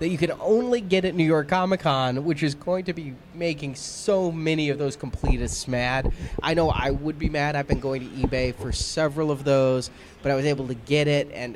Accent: American